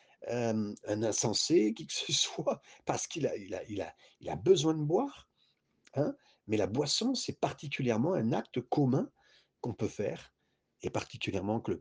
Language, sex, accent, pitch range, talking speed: French, male, French, 110-145 Hz, 180 wpm